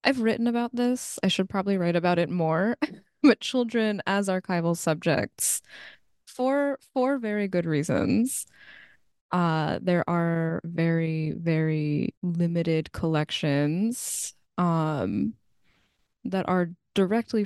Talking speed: 110 wpm